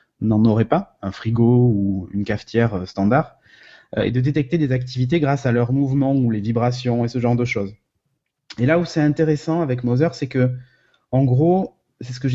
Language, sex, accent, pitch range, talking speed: French, male, French, 115-140 Hz, 205 wpm